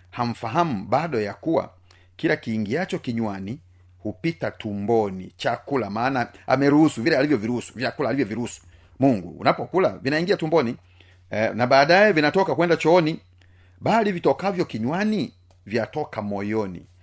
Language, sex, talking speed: Swahili, male, 125 wpm